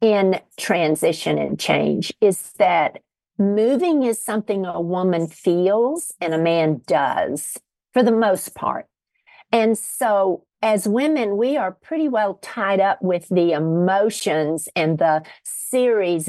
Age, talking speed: 50-69, 135 wpm